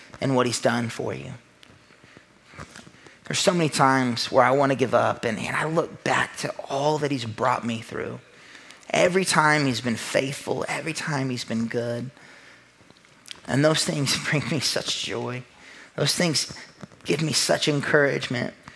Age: 30-49